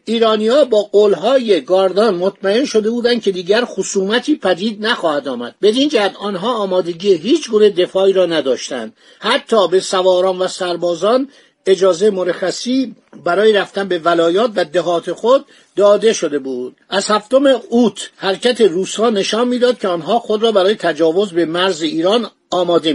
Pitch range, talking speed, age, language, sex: 175-225 Hz, 145 wpm, 50-69, Persian, male